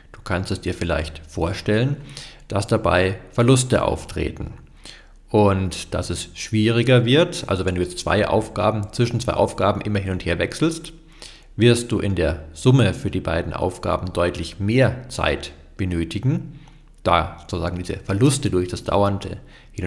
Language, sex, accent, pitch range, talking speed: German, male, German, 85-115 Hz, 145 wpm